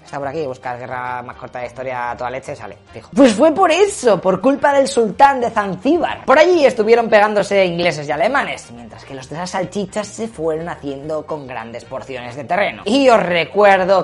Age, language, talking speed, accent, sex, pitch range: 20-39, Spanish, 200 wpm, Spanish, female, 150-235 Hz